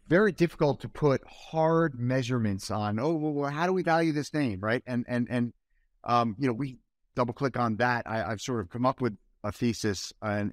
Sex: male